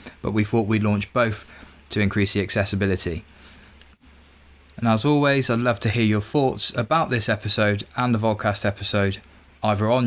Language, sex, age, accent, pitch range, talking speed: English, male, 20-39, British, 90-115 Hz, 165 wpm